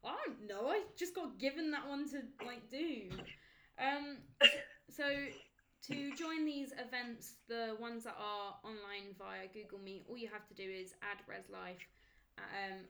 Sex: female